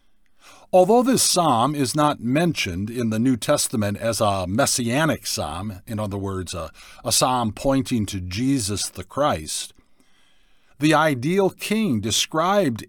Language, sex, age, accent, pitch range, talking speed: English, male, 50-69, American, 105-150 Hz, 135 wpm